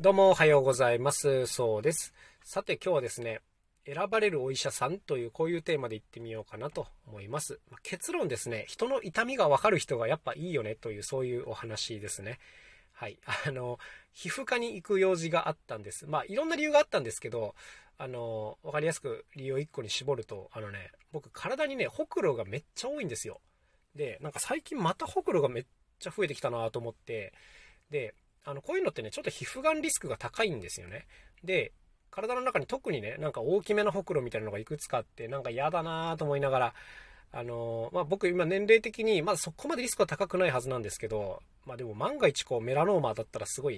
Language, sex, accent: Japanese, male, native